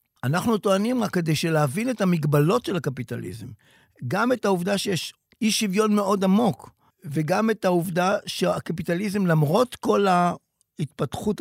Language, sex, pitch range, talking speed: Hebrew, male, 150-200 Hz, 125 wpm